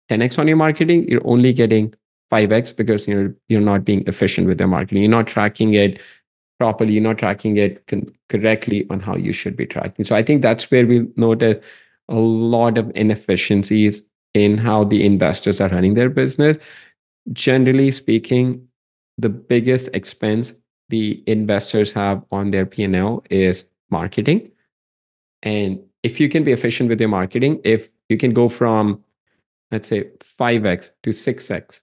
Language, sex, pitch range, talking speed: English, male, 105-120 Hz, 165 wpm